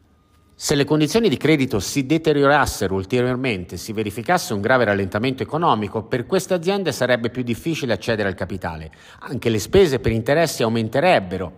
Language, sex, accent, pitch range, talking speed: Italian, male, native, 100-140 Hz, 150 wpm